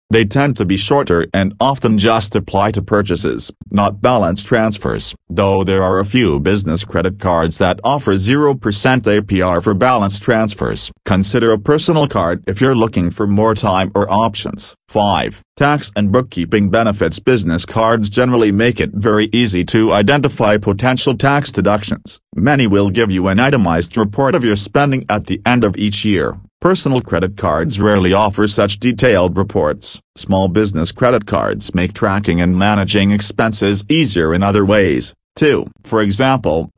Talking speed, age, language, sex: 160 wpm, 40-59, English, male